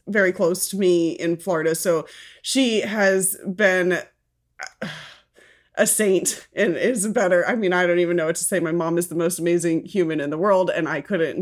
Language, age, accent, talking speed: English, 20-39, American, 195 wpm